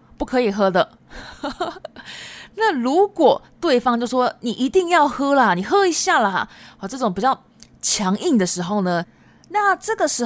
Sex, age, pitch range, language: female, 20-39, 190-270 Hz, Japanese